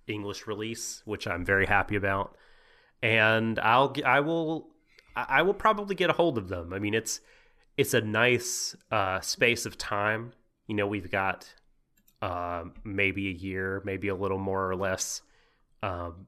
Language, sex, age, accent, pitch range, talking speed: English, male, 30-49, American, 95-115 Hz, 160 wpm